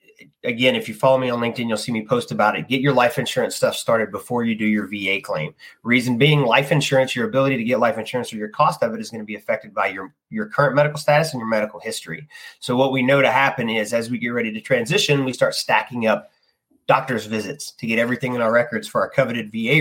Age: 30-49